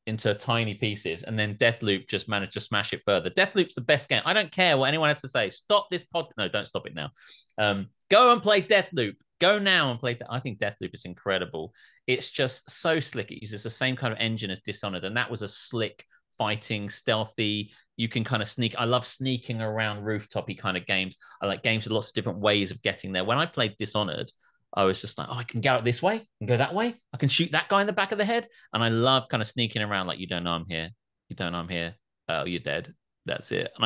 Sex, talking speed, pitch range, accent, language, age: male, 255 wpm, 100-135 Hz, British, English, 30-49